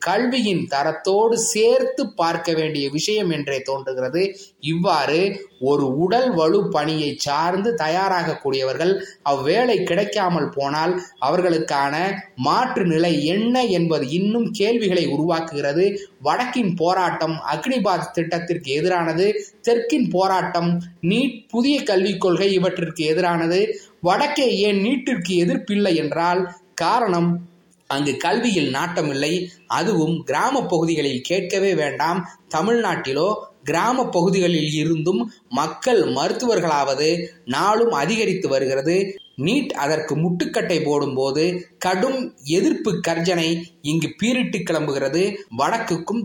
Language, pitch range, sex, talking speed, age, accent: Tamil, 155-195 Hz, male, 95 wpm, 20-39, native